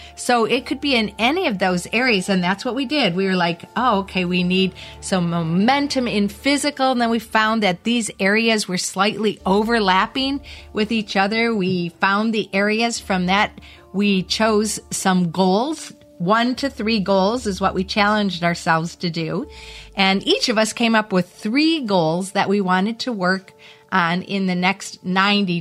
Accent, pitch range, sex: American, 185-225 Hz, female